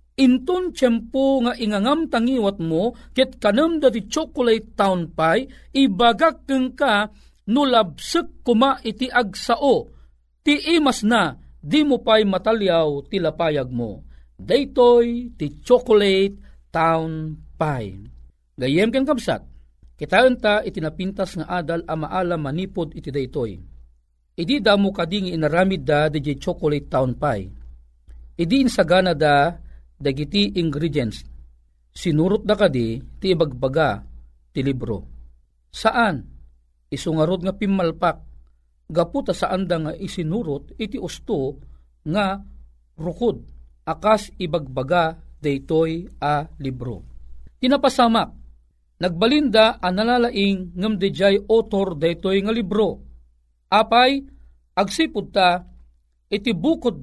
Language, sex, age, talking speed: Filipino, male, 40-59, 110 wpm